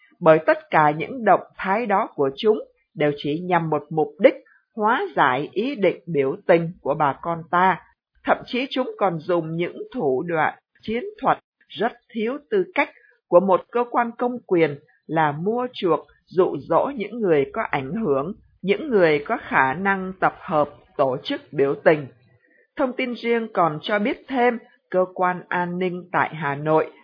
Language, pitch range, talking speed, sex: Vietnamese, 165-250 Hz, 180 wpm, female